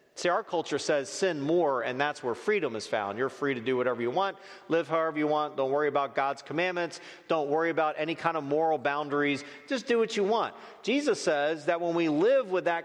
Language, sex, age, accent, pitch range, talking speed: English, male, 40-59, American, 155-235 Hz, 230 wpm